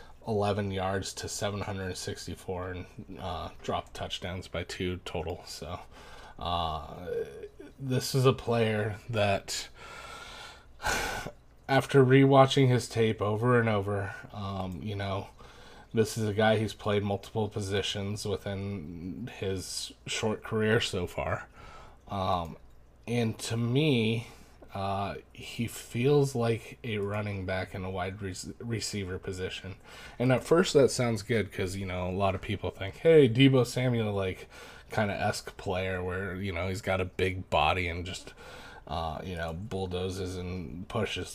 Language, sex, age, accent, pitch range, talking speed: English, male, 20-39, American, 95-115 Hz, 140 wpm